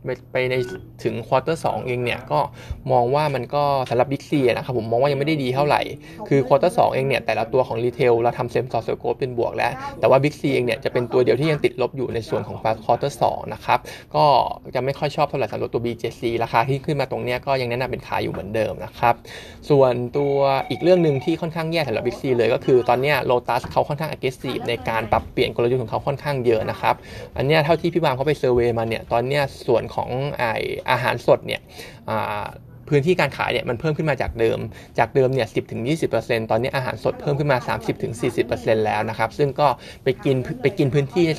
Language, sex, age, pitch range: Thai, male, 20-39, 120-145 Hz